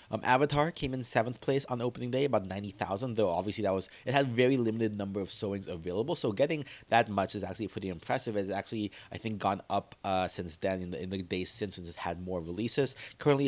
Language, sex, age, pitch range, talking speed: English, male, 30-49, 100-130 Hz, 230 wpm